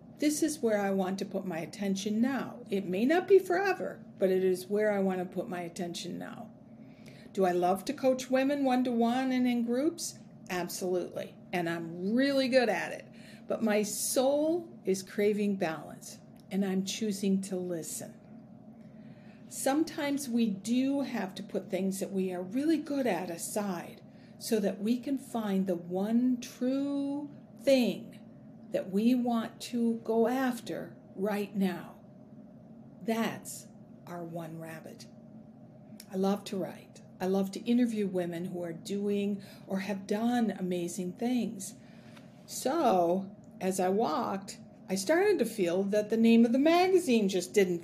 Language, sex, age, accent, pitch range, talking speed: English, female, 50-69, American, 190-240 Hz, 155 wpm